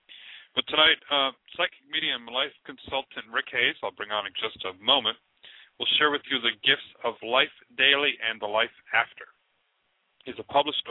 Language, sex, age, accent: English, male, 40-59, American